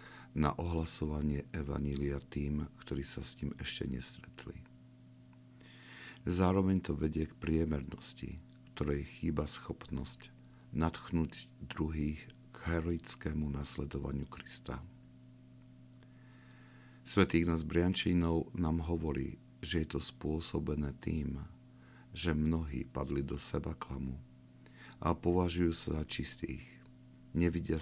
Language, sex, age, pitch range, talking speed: Slovak, male, 50-69, 70-90 Hz, 100 wpm